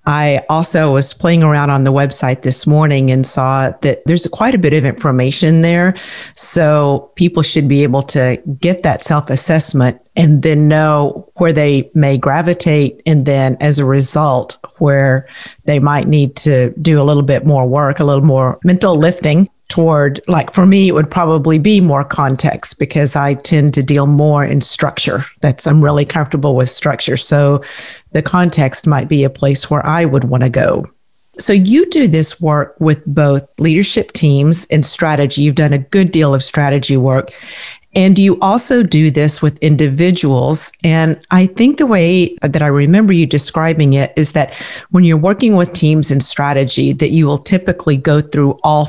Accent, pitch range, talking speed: American, 140-170 Hz, 180 wpm